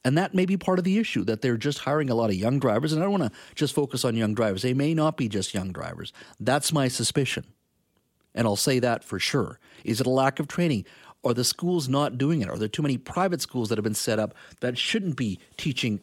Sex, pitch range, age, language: male, 115-150 Hz, 50-69, English